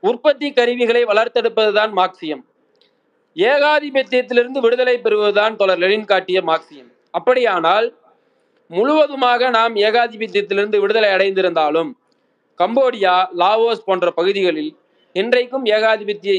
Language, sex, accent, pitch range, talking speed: Tamil, male, native, 185-250 Hz, 75 wpm